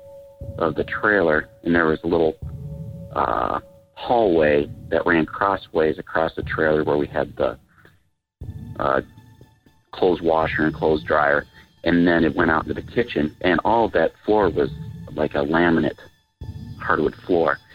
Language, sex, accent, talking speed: English, male, American, 150 wpm